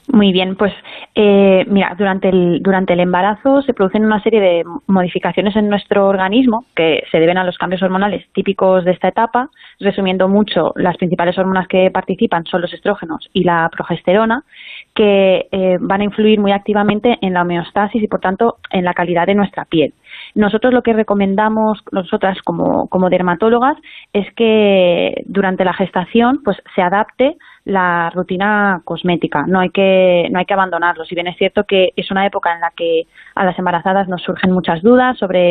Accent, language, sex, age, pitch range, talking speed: Spanish, Spanish, female, 20-39, 180-215 Hz, 180 wpm